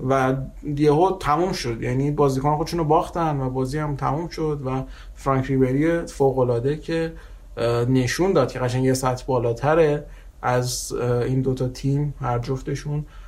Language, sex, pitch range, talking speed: Persian, male, 130-155 Hz, 145 wpm